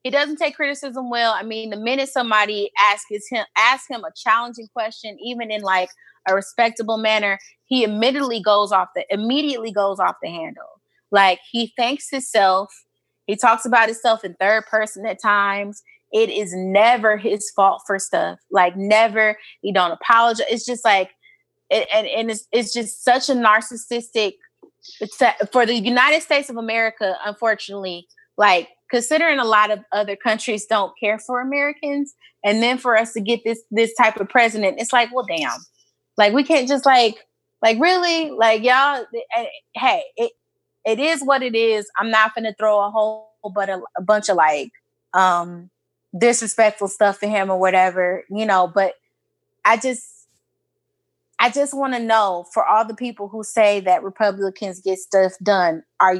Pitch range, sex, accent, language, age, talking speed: 205-255 Hz, female, American, English, 20-39, 175 wpm